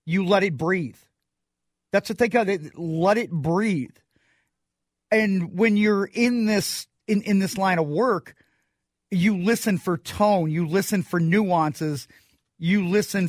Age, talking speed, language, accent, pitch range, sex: 40-59, 150 wpm, English, American, 170-215 Hz, male